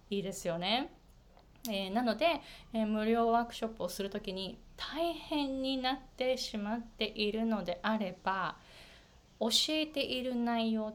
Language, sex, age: Japanese, female, 20-39